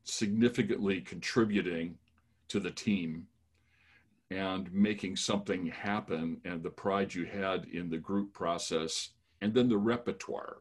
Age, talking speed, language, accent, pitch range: 50-69, 125 wpm, English, American, 85-105 Hz